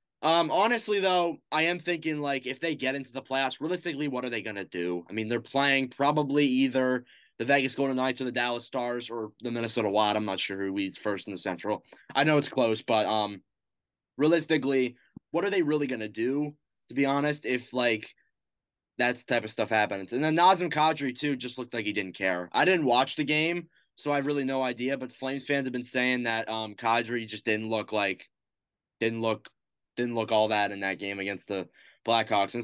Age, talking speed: 20-39, 220 wpm